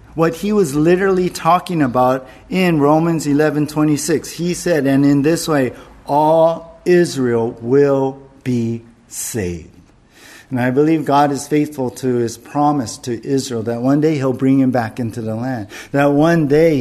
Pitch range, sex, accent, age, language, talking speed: 130-185 Hz, male, American, 50-69, English, 165 wpm